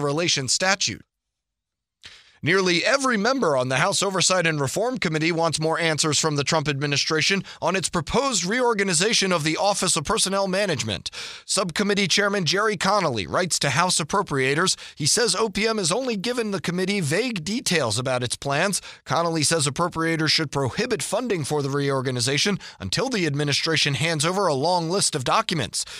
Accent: American